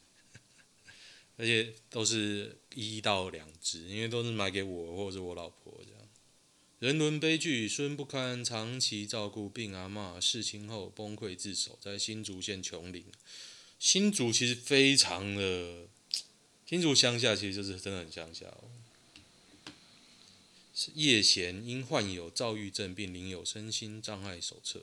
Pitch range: 95-115 Hz